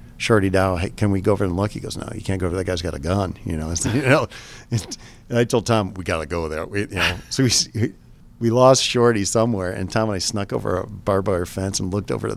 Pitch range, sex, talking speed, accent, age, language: 90-110 Hz, male, 265 wpm, American, 50-69, English